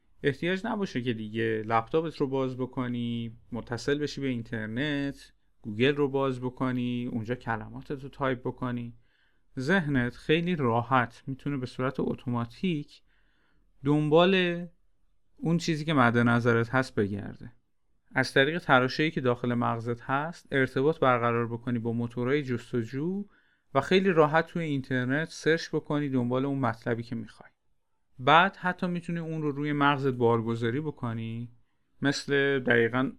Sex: male